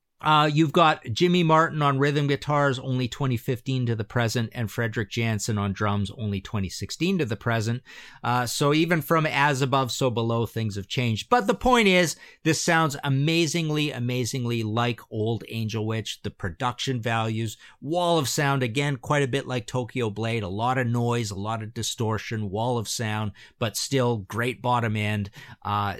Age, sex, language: 50-69, male, English